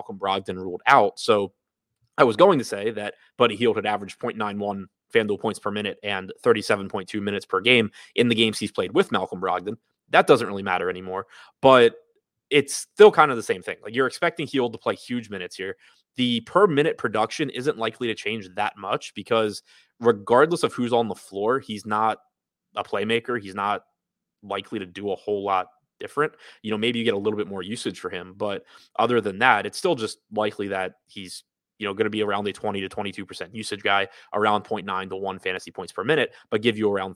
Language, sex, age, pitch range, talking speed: English, male, 20-39, 100-120 Hz, 210 wpm